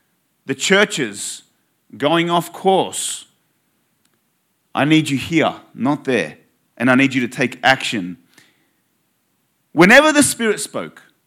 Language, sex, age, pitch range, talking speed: English, male, 30-49, 150-210 Hz, 115 wpm